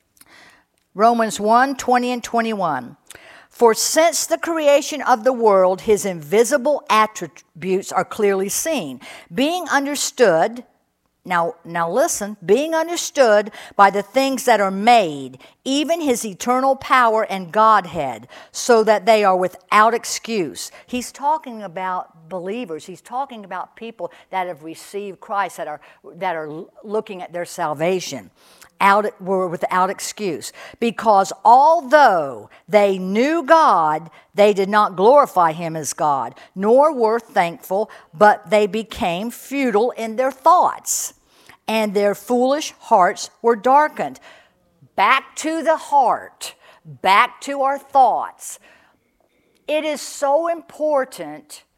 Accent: American